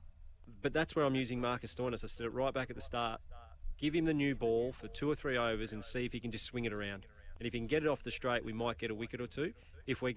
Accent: Australian